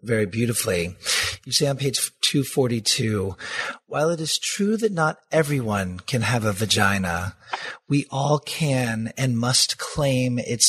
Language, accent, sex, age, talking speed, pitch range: English, American, male, 40-59, 140 wpm, 110-140 Hz